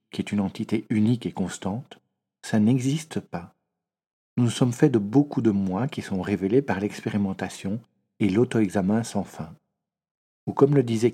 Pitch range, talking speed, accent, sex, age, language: 95-125 Hz, 165 wpm, French, male, 50-69, French